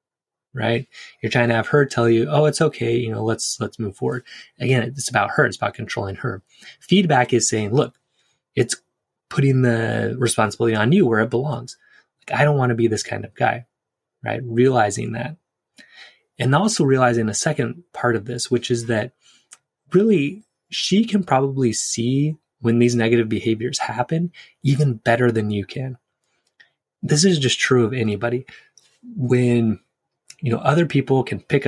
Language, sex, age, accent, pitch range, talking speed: English, male, 20-39, American, 115-135 Hz, 170 wpm